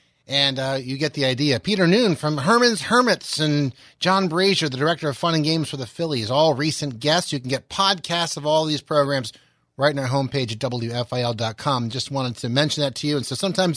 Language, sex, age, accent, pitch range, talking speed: English, male, 30-49, American, 130-165 Hz, 220 wpm